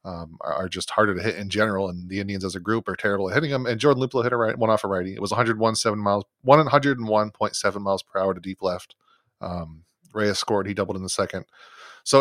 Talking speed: 245 wpm